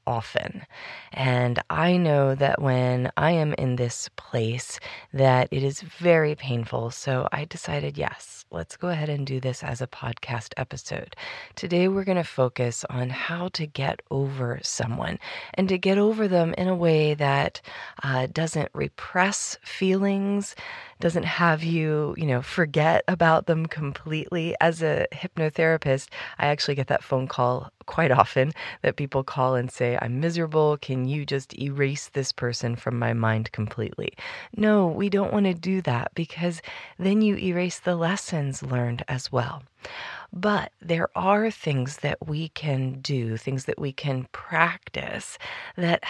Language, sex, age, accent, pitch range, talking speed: English, female, 30-49, American, 130-175 Hz, 160 wpm